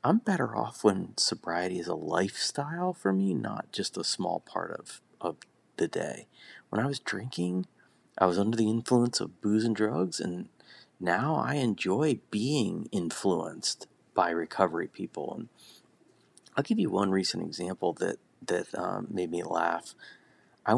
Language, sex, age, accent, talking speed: English, male, 40-59, American, 160 wpm